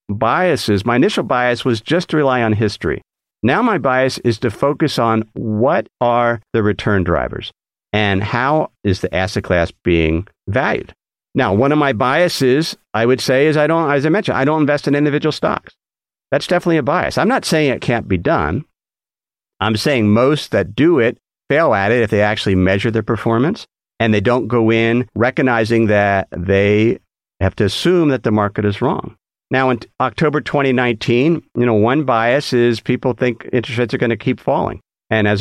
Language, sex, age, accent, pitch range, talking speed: English, male, 50-69, American, 100-130 Hz, 190 wpm